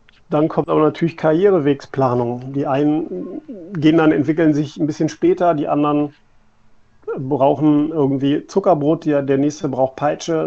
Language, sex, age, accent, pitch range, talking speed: German, male, 40-59, German, 120-150 Hz, 140 wpm